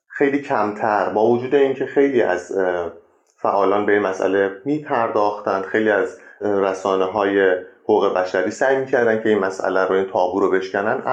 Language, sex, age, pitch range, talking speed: Persian, male, 30-49, 100-135 Hz, 145 wpm